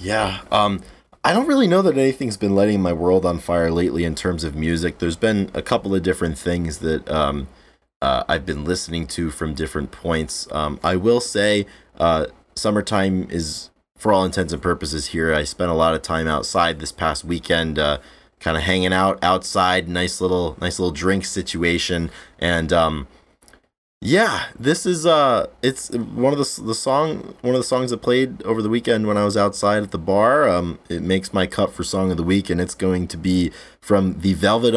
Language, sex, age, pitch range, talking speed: English, male, 20-39, 85-105 Hz, 200 wpm